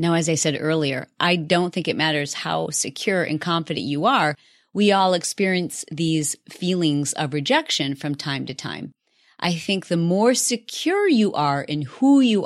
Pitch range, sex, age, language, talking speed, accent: 155-210 Hz, female, 30-49, English, 180 wpm, American